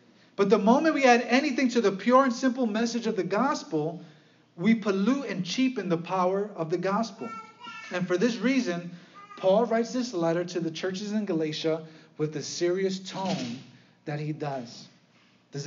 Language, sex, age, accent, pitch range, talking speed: English, male, 30-49, American, 175-225 Hz, 170 wpm